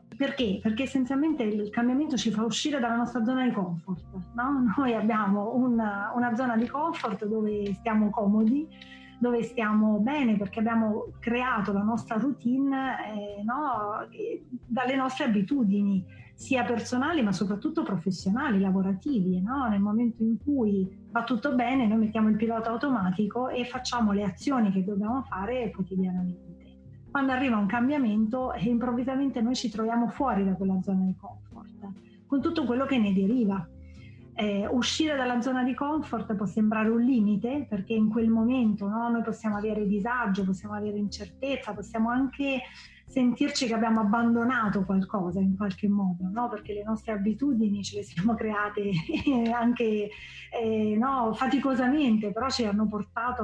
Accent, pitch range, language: native, 205-250 Hz, Italian